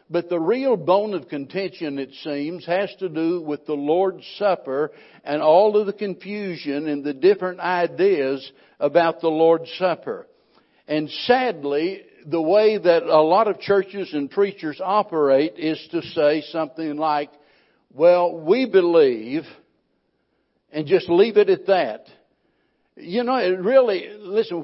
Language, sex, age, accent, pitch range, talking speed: English, male, 60-79, American, 155-210 Hz, 145 wpm